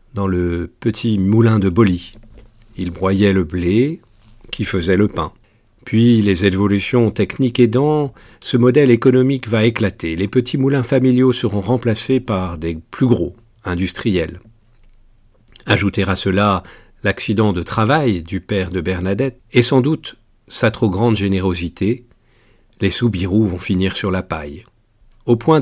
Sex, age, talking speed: male, 50-69, 145 wpm